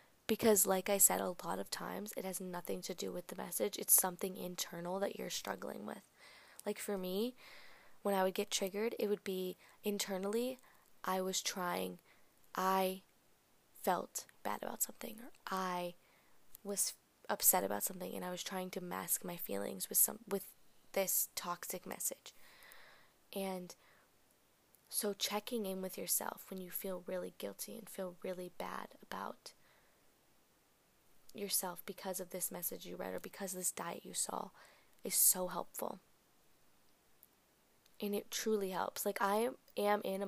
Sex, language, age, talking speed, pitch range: female, English, 20-39, 160 wpm, 185-210 Hz